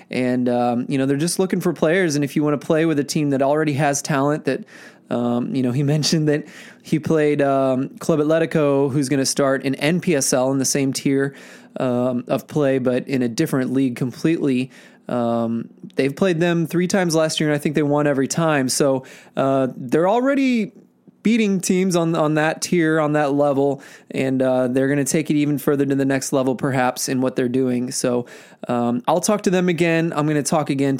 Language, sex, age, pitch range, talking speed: English, male, 20-39, 130-160 Hz, 215 wpm